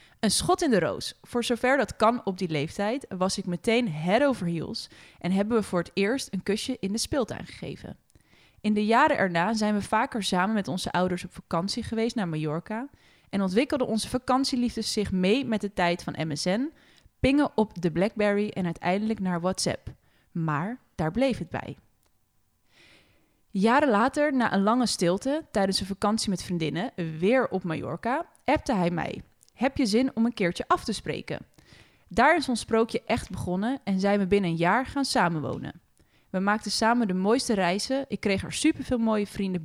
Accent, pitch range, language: Dutch, 180-235 Hz, Dutch